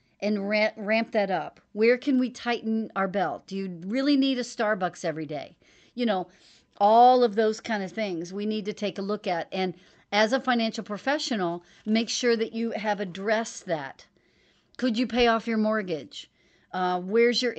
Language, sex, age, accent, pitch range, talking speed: English, female, 40-59, American, 190-235 Hz, 190 wpm